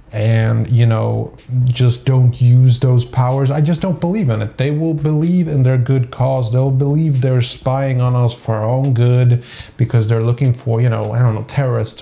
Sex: male